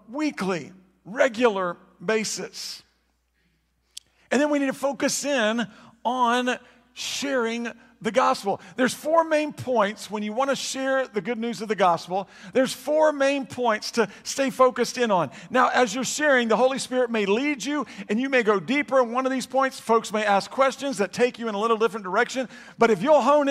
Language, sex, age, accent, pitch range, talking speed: English, male, 50-69, American, 210-260 Hz, 190 wpm